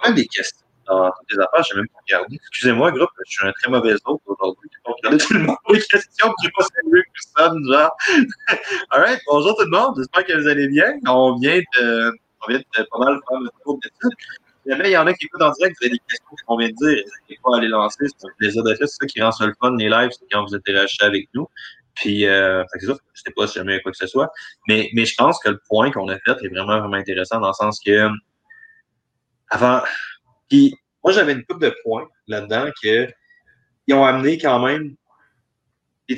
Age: 30-49